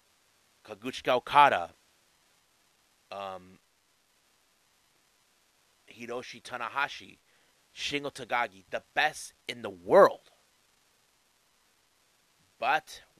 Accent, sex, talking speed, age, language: American, male, 60 wpm, 30-49, English